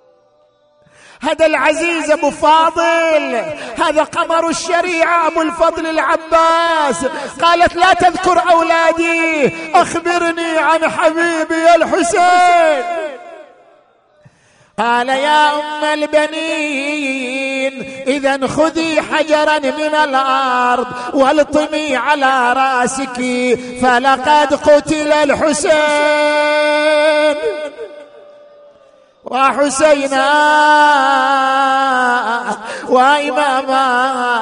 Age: 50-69